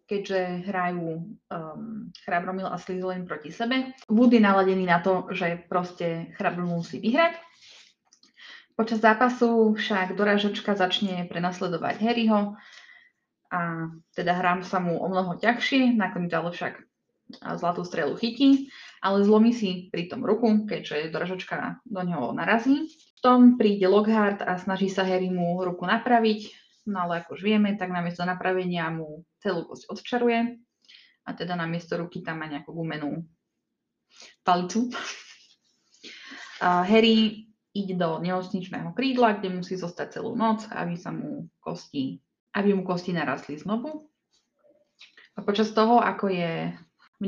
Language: Slovak